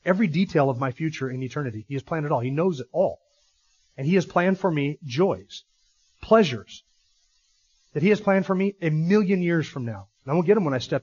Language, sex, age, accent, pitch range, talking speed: English, male, 40-59, American, 135-180 Hz, 235 wpm